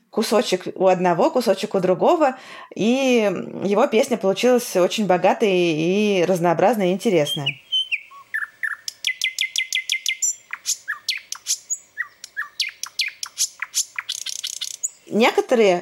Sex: female